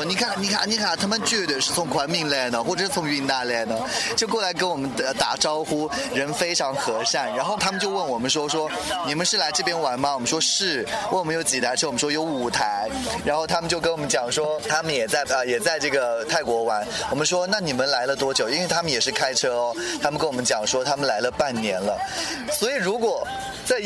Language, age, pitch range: Chinese, 20-39, 135-185 Hz